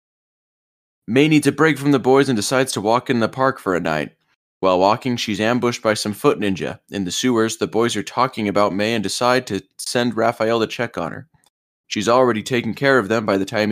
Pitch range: 95-125 Hz